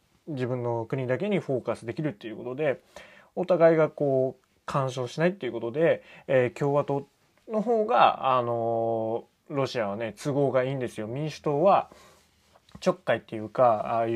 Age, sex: 20-39, male